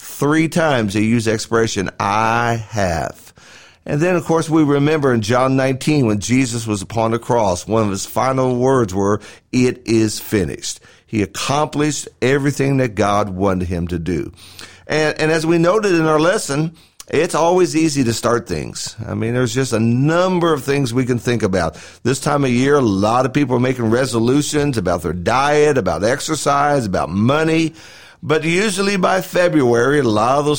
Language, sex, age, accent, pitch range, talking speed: English, male, 50-69, American, 110-150 Hz, 180 wpm